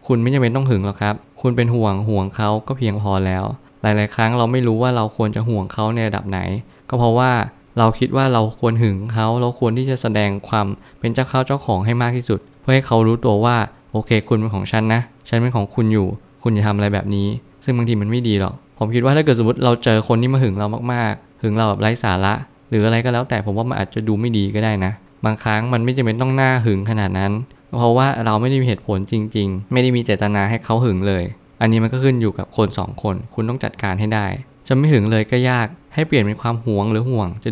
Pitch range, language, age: 105-125 Hz, Thai, 20-39